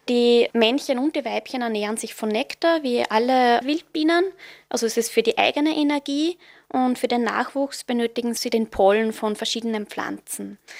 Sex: female